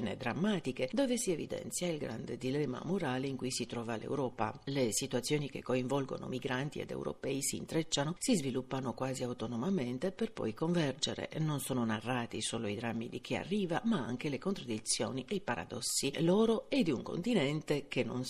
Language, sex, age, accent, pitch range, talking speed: Italian, female, 50-69, native, 120-150 Hz, 170 wpm